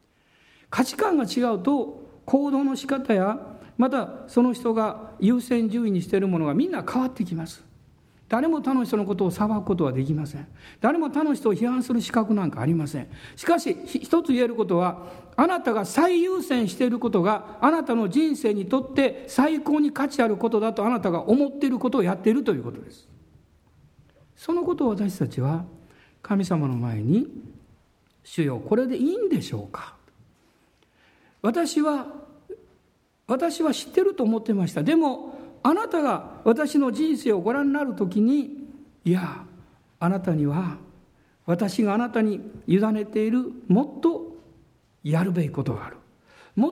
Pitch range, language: 190-280 Hz, Japanese